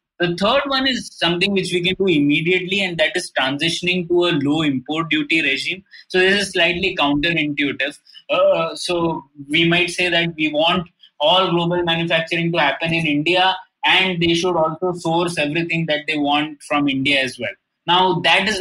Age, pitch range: 20-39, 145-185 Hz